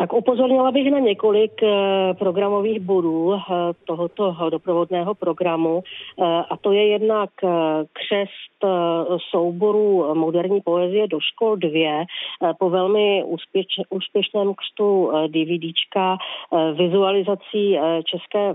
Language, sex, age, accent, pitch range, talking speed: Czech, female, 40-59, native, 170-195 Hz, 90 wpm